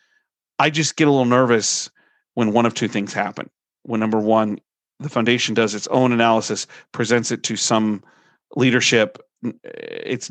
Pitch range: 105-125 Hz